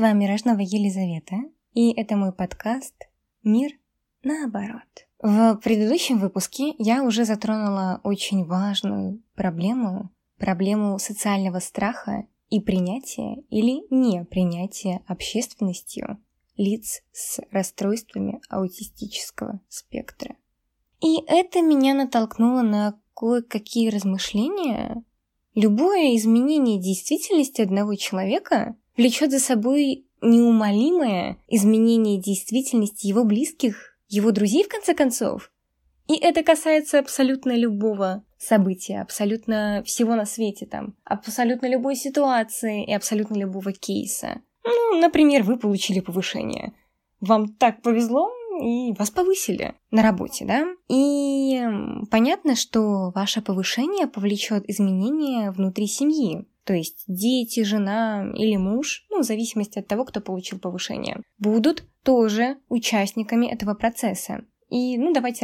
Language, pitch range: Russian, 200-255 Hz